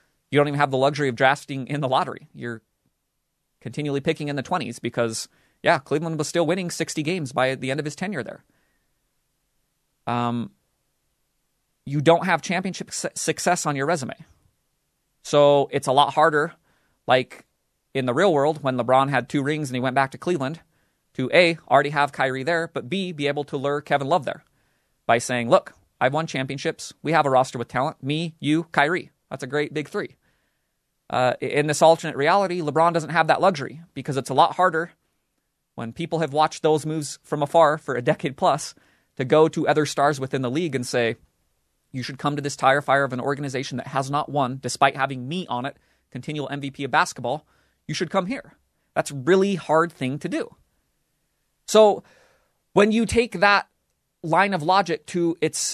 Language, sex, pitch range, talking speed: English, male, 135-165 Hz, 190 wpm